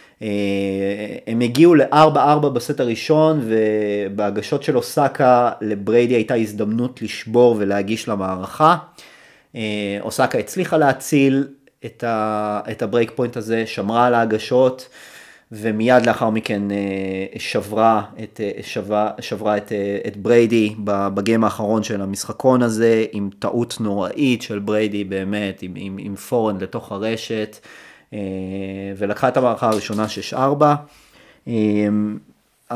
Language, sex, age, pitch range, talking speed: Hebrew, male, 30-49, 105-125 Hz, 120 wpm